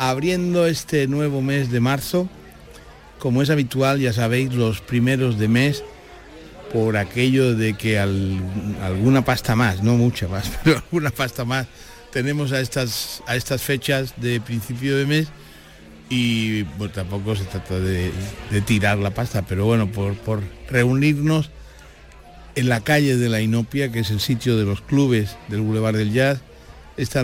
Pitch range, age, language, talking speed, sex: 105-135 Hz, 60-79, Spanish, 160 wpm, male